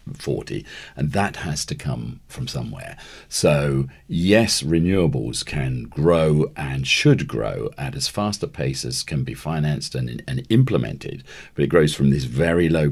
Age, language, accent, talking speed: 50-69, English, British, 165 wpm